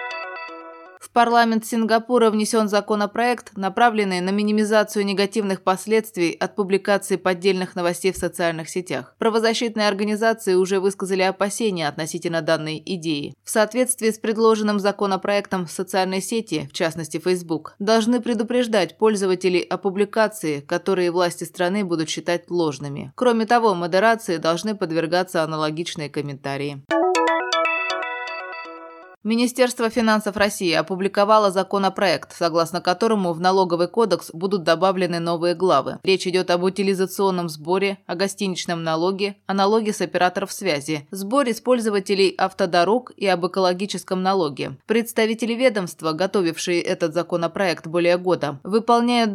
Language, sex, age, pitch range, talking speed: Russian, female, 20-39, 175-210 Hz, 120 wpm